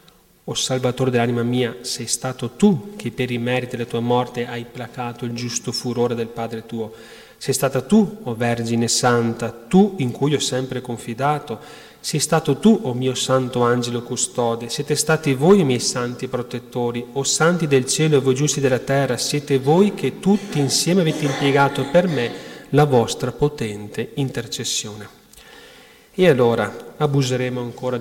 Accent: native